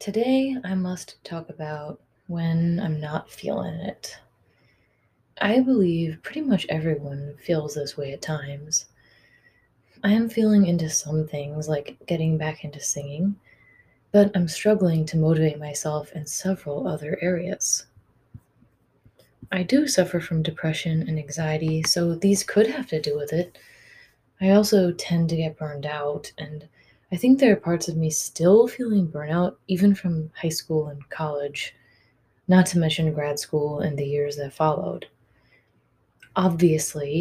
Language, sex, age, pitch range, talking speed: English, female, 20-39, 150-185 Hz, 145 wpm